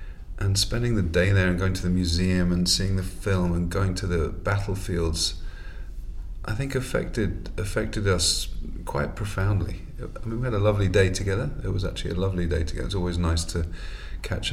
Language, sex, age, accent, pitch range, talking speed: English, male, 40-59, British, 85-100 Hz, 190 wpm